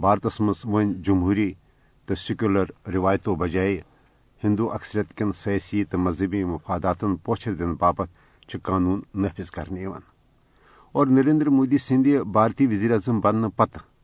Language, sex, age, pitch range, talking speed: Urdu, male, 50-69, 95-125 Hz, 120 wpm